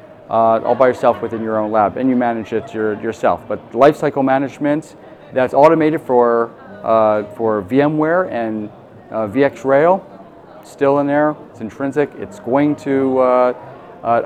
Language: English